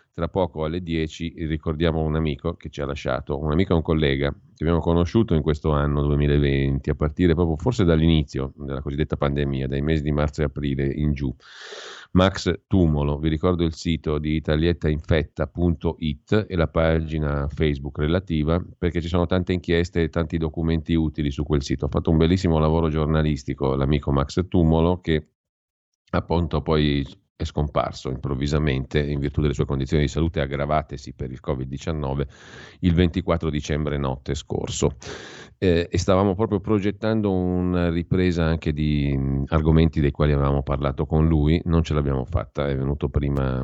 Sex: male